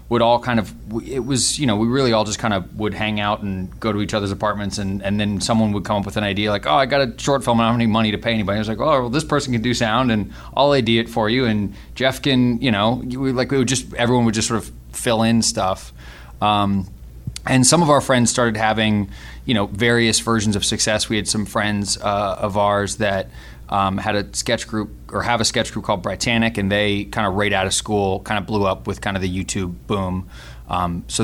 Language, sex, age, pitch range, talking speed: English, male, 20-39, 95-115 Hz, 260 wpm